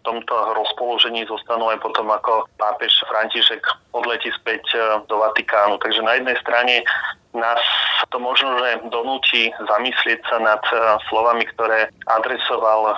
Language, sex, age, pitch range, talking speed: Slovak, male, 30-49, 110-115 Hz, 120 wpm